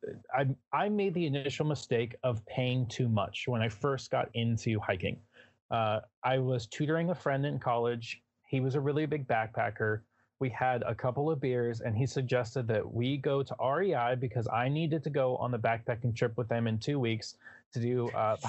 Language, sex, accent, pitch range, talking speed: English, male, American, 115-140 Hz, 200 wpm